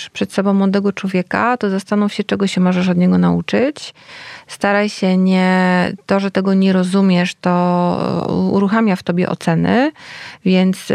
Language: Polish